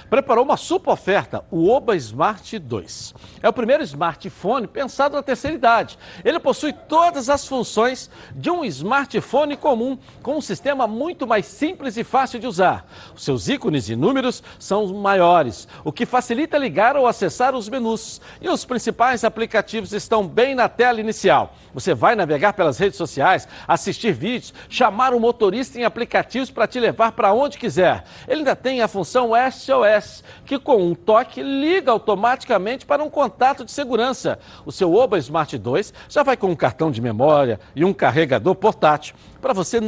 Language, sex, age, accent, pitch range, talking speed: Portuguese, male, 60-79, Brazilian, 195-260 Hz, 170 wpm